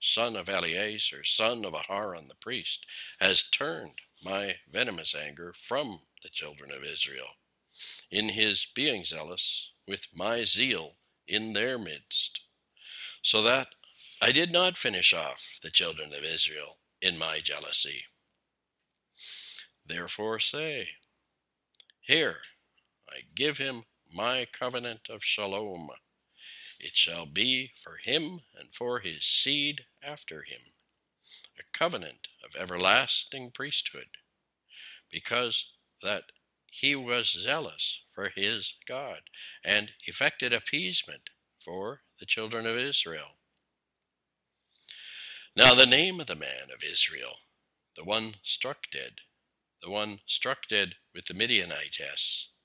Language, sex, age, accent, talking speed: English, male, 60-79, American, 120 wpm